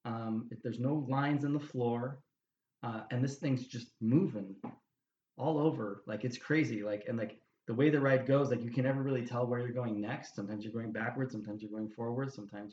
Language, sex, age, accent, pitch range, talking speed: English, male, 20-39, American, 105-130 Hz, 210 wpm